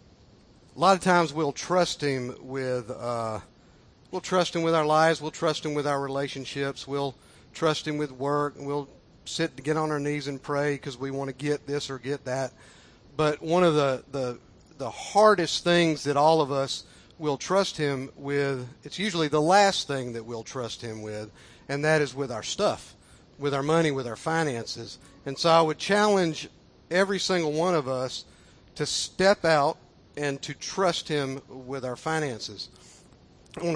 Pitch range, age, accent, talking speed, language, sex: 130-160 Hz, 50-69, American, 185 wpm, English, male